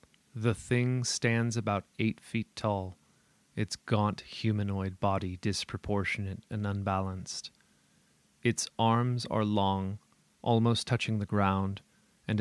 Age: 30-49